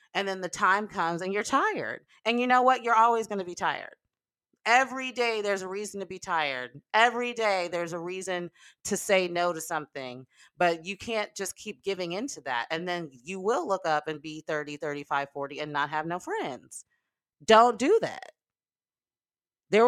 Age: 30-49